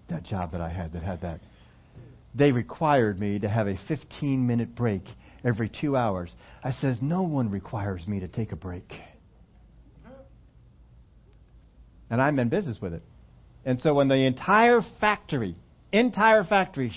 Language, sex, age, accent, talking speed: English, male, 50-69, American, 150 wpm